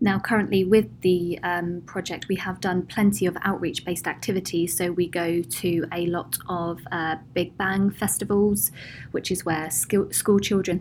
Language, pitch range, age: English, 170-200 Hz, 20-39